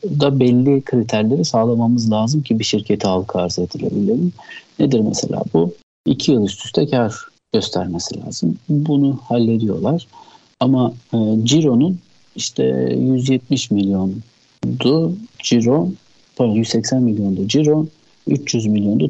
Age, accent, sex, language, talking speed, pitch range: 50-69, native, male, Turkish, 105 wpm, 110-135 Hz